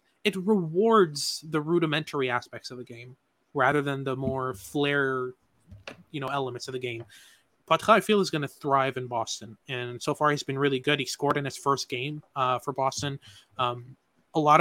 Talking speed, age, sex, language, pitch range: 195 wpm, 20-39, male, English, 130-160 Hz